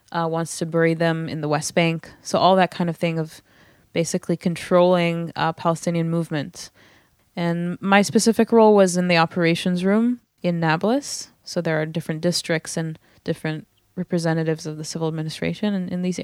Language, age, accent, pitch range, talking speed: English, 20-39, American, 160-185 Hz, 175 wpm